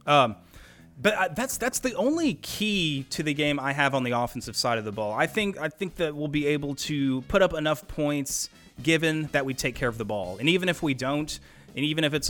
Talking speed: 240 wpm